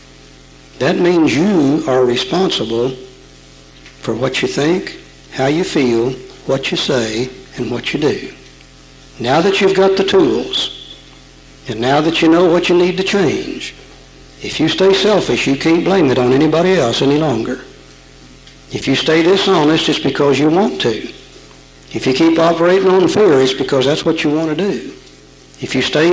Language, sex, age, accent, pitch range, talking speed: English, male, 60-79, American, 130-180 Hz, 170 wpm